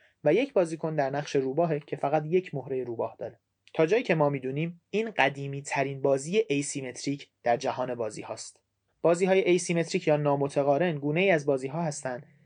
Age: 30-49